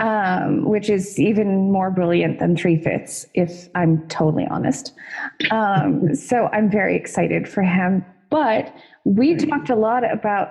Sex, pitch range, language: female, 175-230 Hz, English